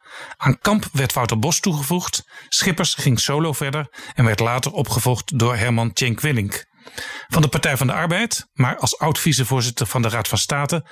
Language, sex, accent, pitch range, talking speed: Dutch, male, Dutch, 120-150 Hz, 175 wpm